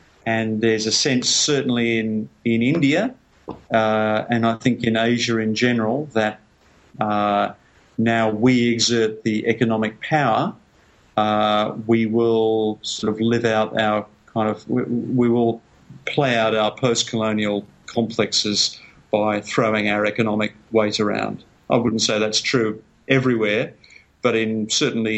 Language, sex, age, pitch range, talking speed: English, male, 50-69, 110-125 Hz, 135 wpm